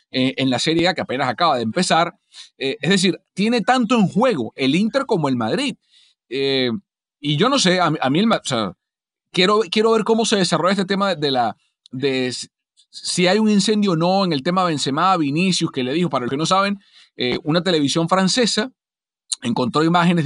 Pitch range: 145-195 Hz